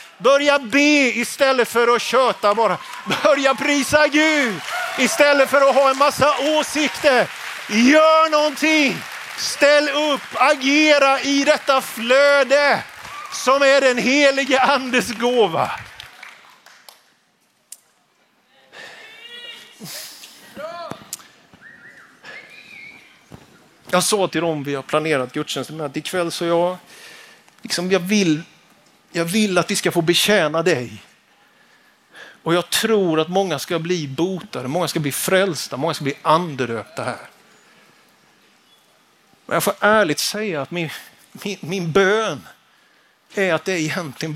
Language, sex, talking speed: Swedish, male, 115 wpm